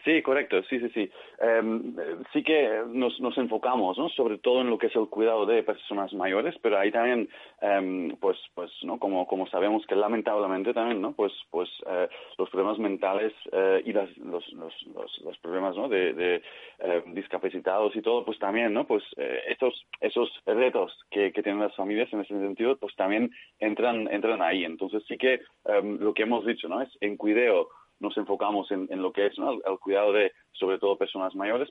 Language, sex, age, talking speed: Spanish, male, 30-49, 205 wpm